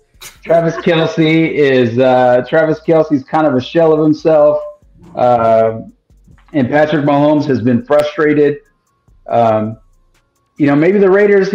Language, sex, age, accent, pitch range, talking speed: English, male, 30-49, American, 130-175 Hz, 130 wpm